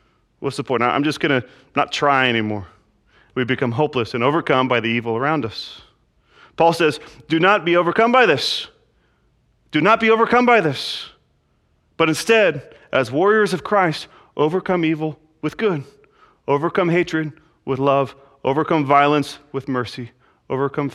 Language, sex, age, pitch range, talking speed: English, male, 30-49, 120-150 Hz, 150 wpm